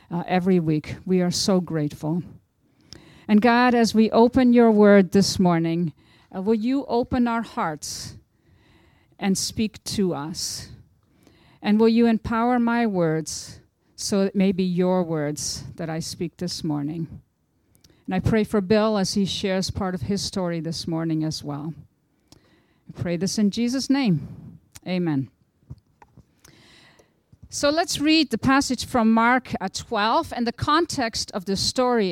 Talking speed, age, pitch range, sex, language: 150 wpm, 50-69, 175-235 Hz, female, English